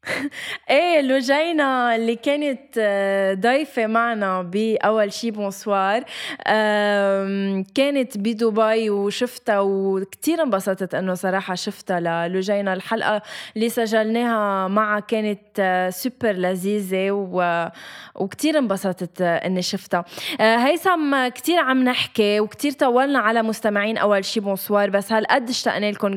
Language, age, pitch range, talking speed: Arabic, 20-39, 200-255 Hz, 110 wpm